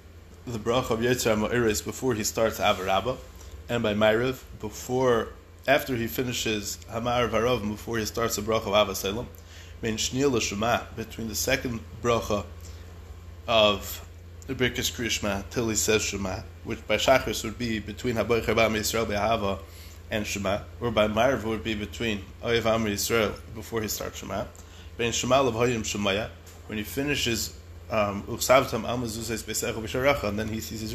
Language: English